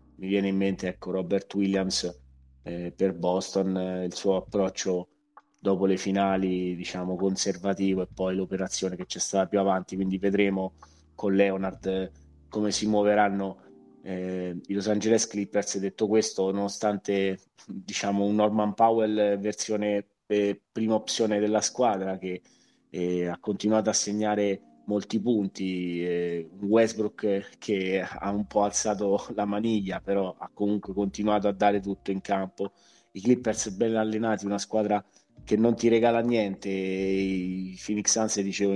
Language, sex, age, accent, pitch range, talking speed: Italian, male, 20-39, native, 95-105 Hz, 145 wpm